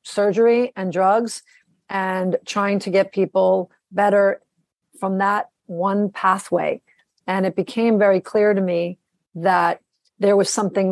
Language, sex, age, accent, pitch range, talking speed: English, female, 40-59, American, 180-205 Hz, 130 wpm